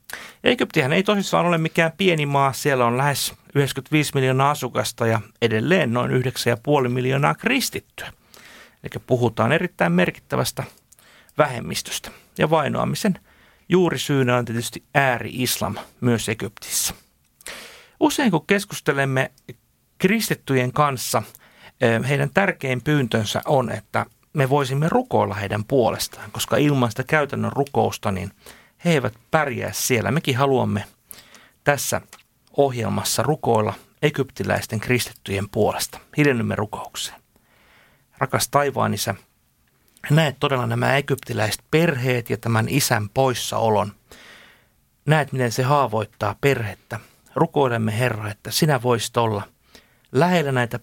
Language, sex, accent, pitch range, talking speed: Finnish, male, native, 115-145 Hz, 105 wpm